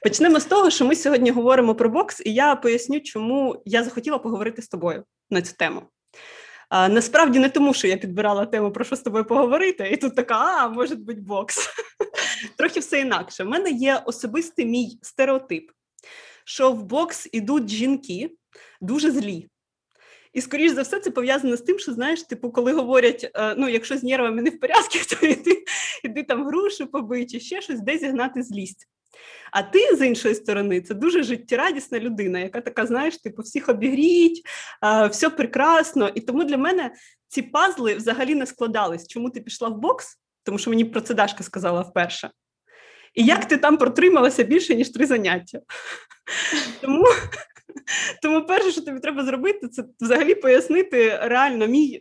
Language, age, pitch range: Ukrainian, 20-39, 230-315 Hz